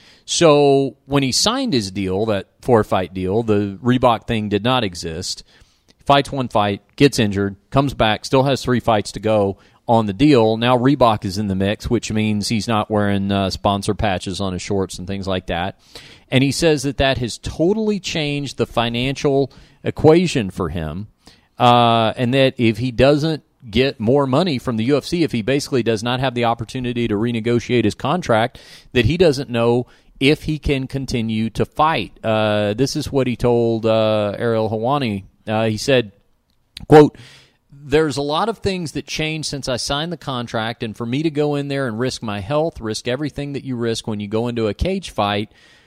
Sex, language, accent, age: male, English, American, 40-59